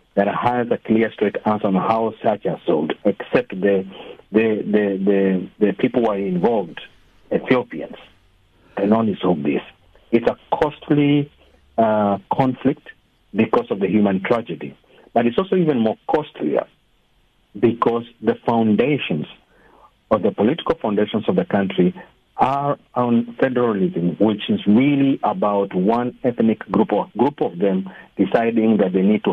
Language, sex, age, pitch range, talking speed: English, male, 50-69, 100-120 Hz, 145 wpm